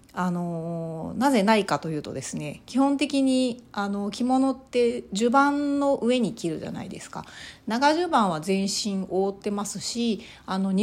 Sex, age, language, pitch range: female, 40-59, Japanese, 180-240 Hz